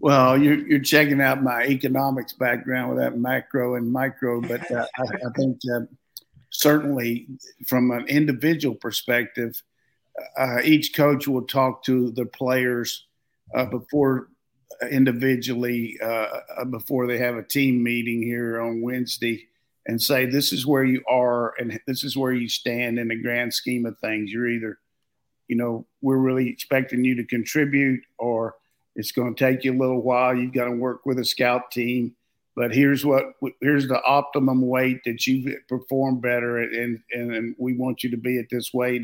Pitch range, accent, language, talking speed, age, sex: 120-130 Hz, American, English, 175 wpm, 50-69, male